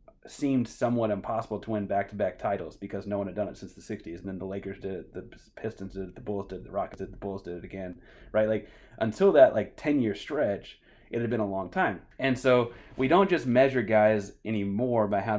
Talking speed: 240 wpm